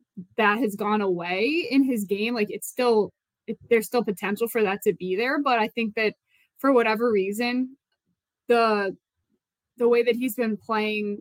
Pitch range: 205-240 Hz